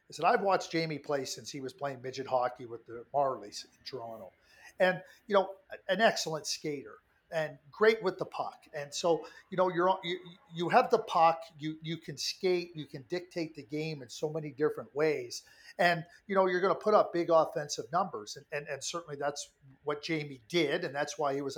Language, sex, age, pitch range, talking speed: English, male, 50-69, 150-195 Hz, 210 wpm